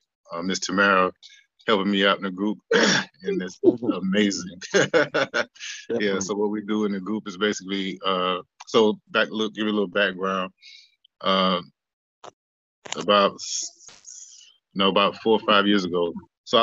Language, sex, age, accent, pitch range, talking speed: English, male, 20-39, American, 90-100 Hz, 160 wpm